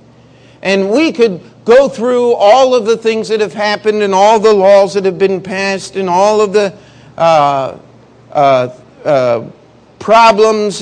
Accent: American